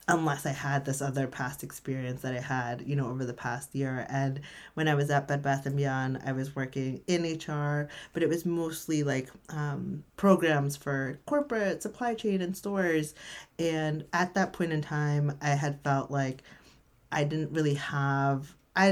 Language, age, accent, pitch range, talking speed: English, 30-49, American, 140-175 Hz, 185 wpm